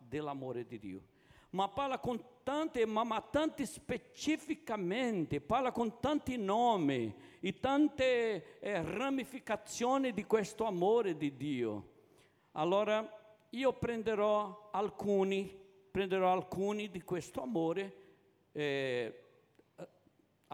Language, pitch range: Italian, 165-225 Hz